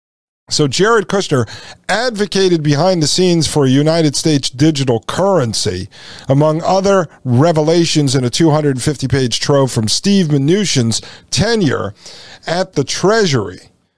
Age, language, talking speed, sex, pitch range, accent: 50-69, English, 115 wpm, male, 125-170 Hz, American